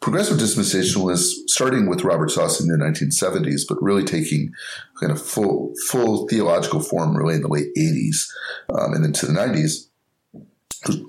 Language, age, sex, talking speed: English, 30-49, male, 155 wpm